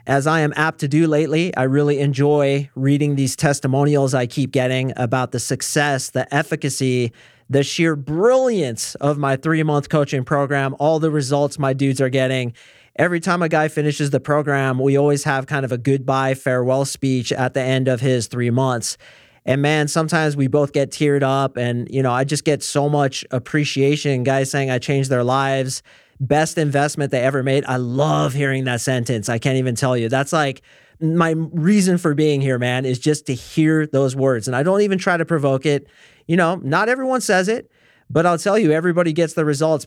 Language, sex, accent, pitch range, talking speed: English, male, American, 130-155 Hz, 200 wpm